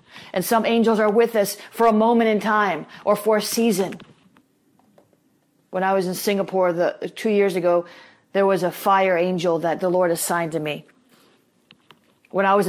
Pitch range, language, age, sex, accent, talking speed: 195-230 Hz, English, 30-49, female, American, 180 wpm